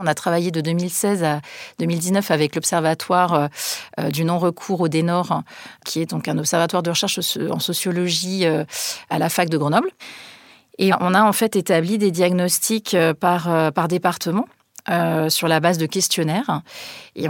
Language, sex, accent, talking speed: French, female, French, 155 wpm